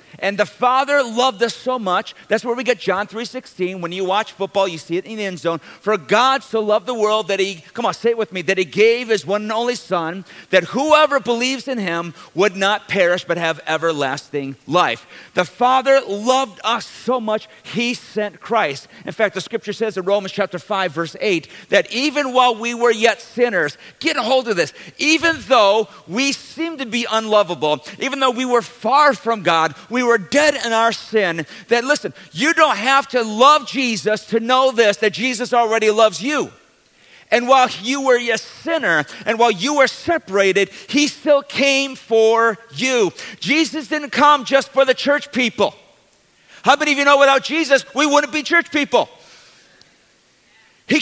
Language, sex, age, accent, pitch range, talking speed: English, male, 50-69, American, 200-270 Hz, 195 wpm